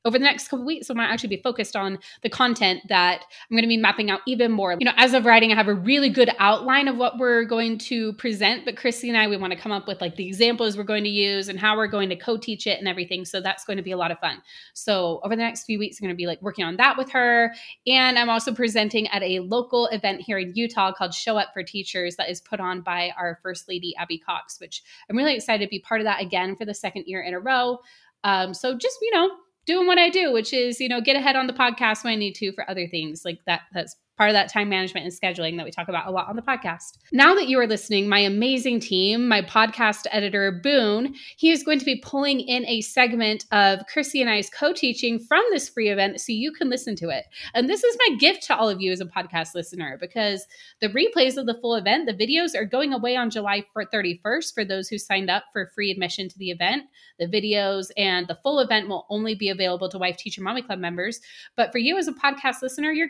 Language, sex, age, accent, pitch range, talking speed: English, female, 20-39, American, 190-255 Hz, 265 wpm